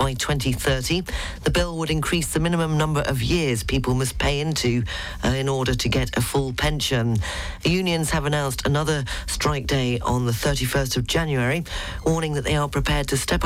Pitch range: 125-155 Hz